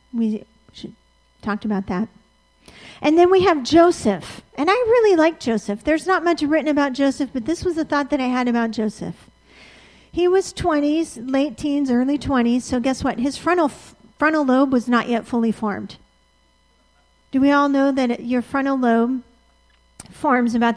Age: 40-59